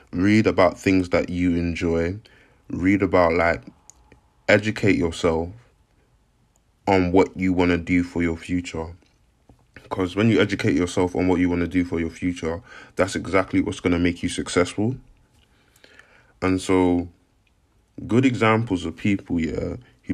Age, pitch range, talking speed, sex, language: 20-39, 85-100 Hz, 150 wpm, male, English